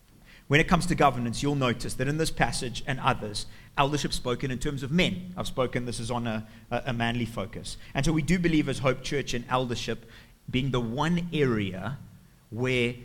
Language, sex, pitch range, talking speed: English, male, 120-150 Hz, 200 wpm